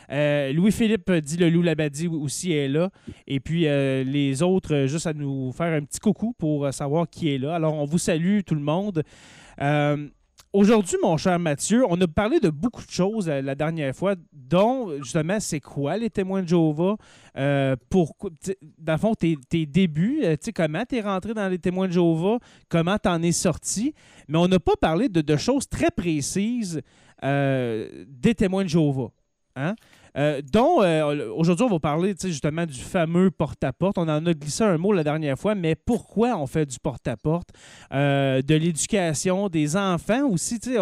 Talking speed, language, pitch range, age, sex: 185 wpm, French, 145-190 Hz, 20-39, male